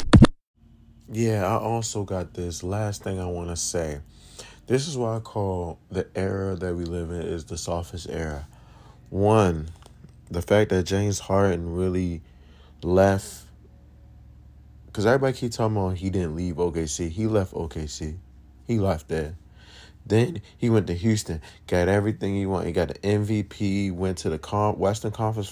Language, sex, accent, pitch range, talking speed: English, male, American, 85-105 Hz, 160 wpm